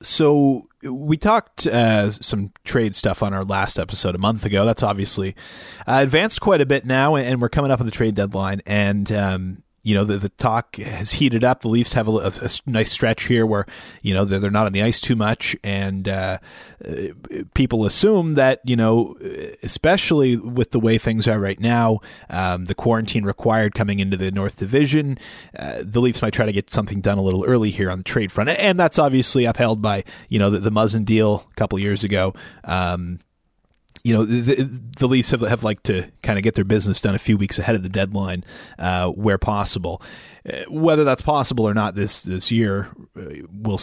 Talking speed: 210 wpm